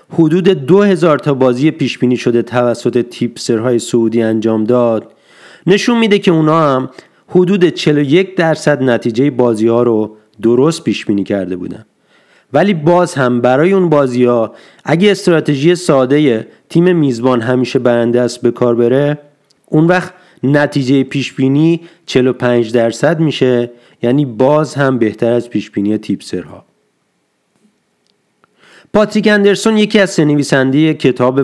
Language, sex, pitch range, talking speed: Persian, male, 125-170 Hz, 130 wpm